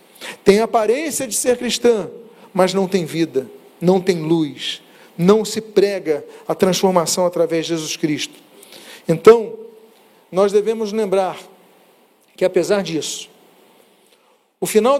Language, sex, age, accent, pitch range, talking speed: Portuguese, male, 40-59, Brazilian, 195-260 Hz, 125 wpm